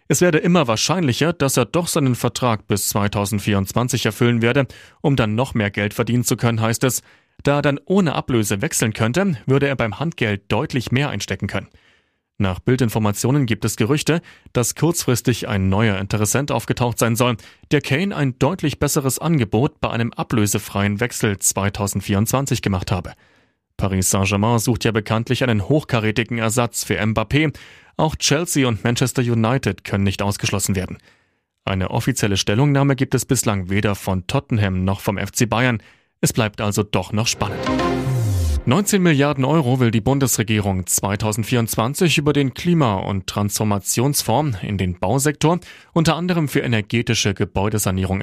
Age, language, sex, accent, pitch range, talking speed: 30-49, German, male, German, 105-135 Hz, 150 wpm